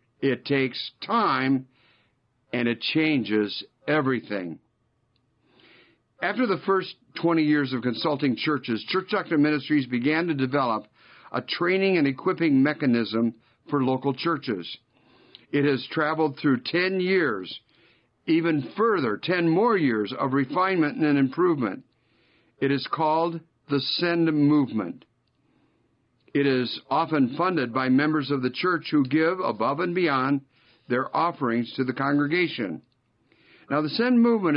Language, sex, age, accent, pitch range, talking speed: English, male, 50-69, American, 130-165 Hz, 125 wpm